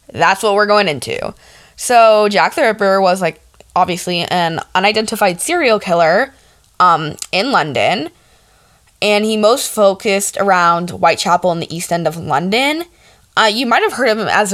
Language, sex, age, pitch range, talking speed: English, female, 10-29, 170-215 Hz, 160 wpm